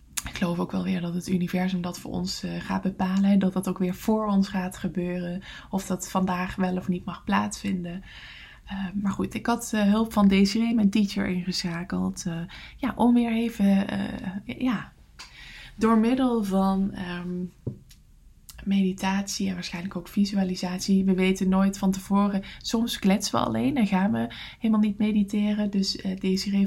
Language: English